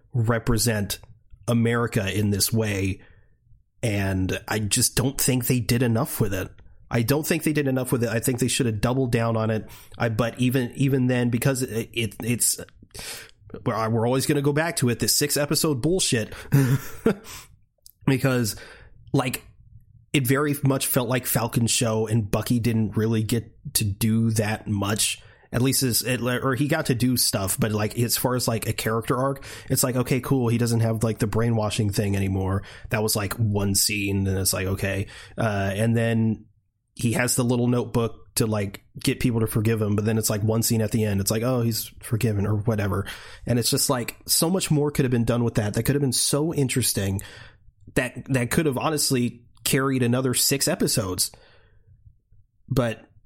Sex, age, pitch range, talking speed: male, 30-49, 110-130 Hz, 190 wpm